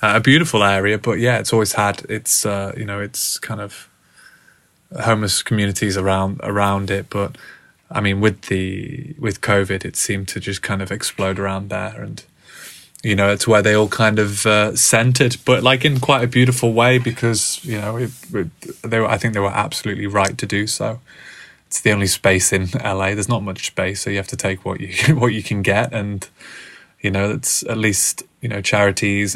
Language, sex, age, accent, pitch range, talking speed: English, male, 20-39, British, 100-115 Hz, 205 wpm